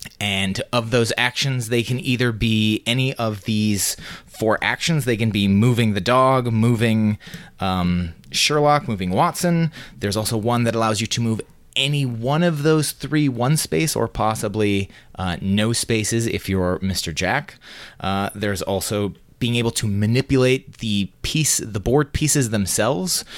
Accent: American